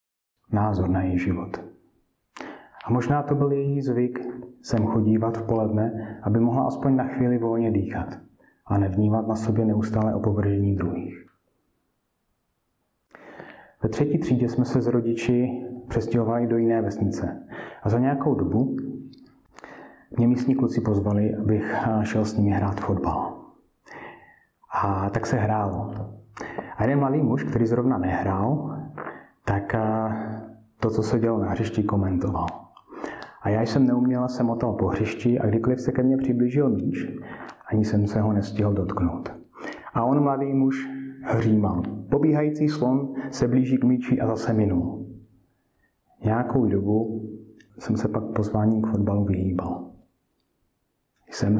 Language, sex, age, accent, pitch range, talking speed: Czech, male, 30-49, native, 100-125 Hz, 135 wpm